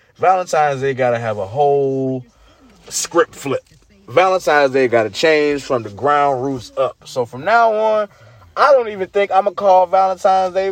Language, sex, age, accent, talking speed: English, male, 20-39, American, 185 wpm